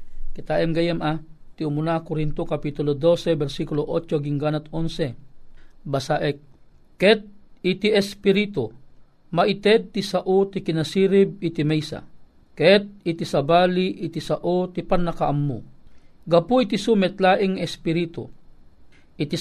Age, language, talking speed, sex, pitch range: 50-69, Filipino, 110 wpm, male, 155-190 Hz